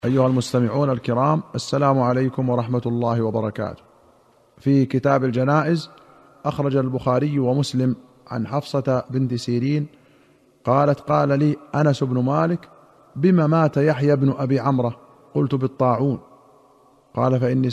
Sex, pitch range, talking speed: male, 125-145 Hz, 115 wpm